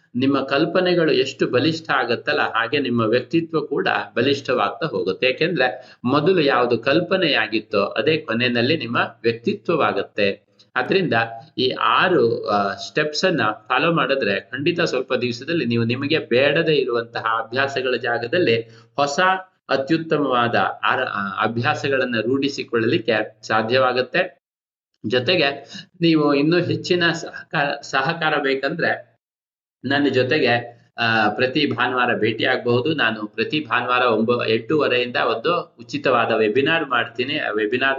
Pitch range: 115-150 Hz